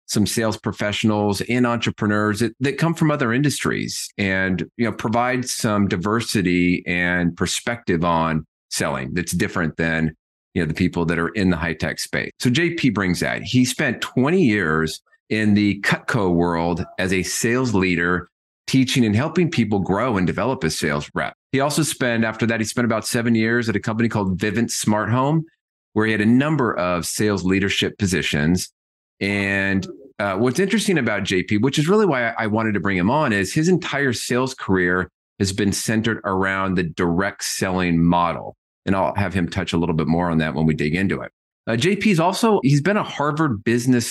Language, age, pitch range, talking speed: English, 30-49, 90-120 Hz, 190 wpm